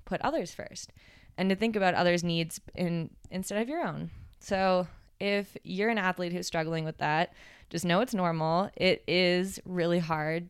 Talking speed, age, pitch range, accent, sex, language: 175 wpm, 20-39, 160-185 Hz, American, female, English